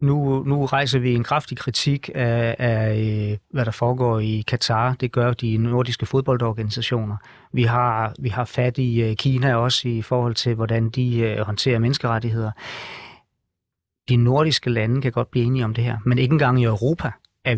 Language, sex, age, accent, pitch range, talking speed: Danish, male, 30-49, native, 120-140 Hz, 170 wpm